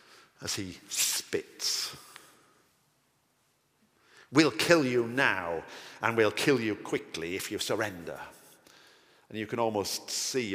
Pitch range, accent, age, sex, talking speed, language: 105-160 Hz, British, 50-69, male, 115 wpm, English